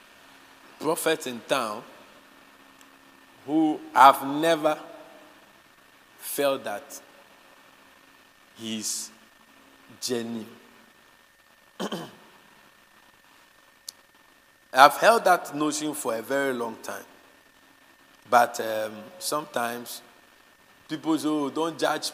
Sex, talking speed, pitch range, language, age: male, 75 wpm, 125-180 Hz, English, 50-69